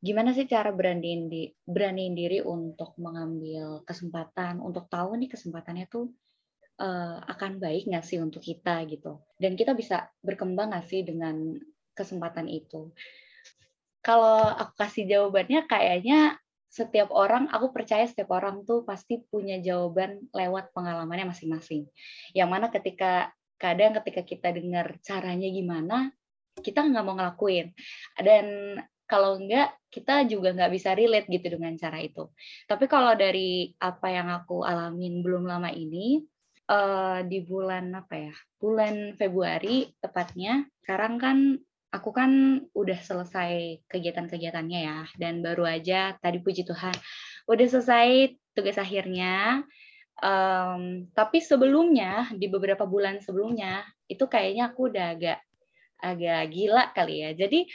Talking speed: 130 wpm